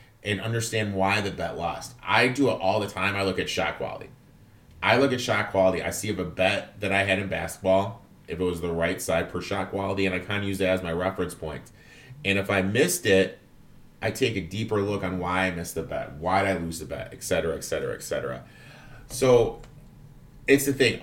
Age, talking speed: 30-49, 230 wpm